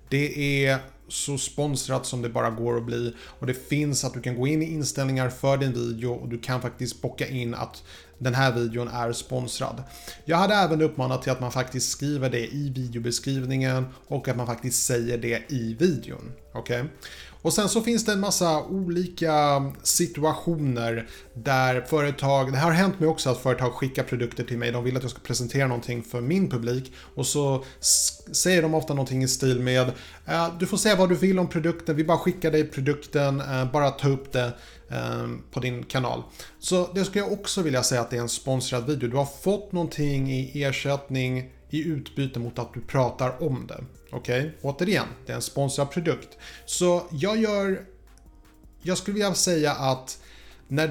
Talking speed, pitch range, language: 190 wpm, 125-155 Hz, Swedish